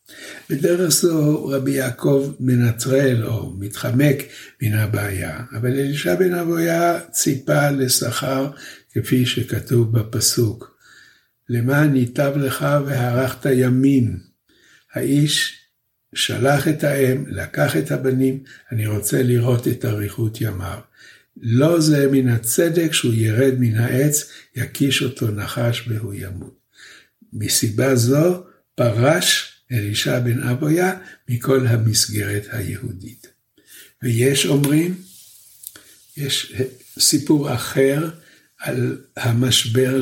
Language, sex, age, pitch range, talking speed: Hebrew, male, 60-79, 115-140 Hz, 95 wpm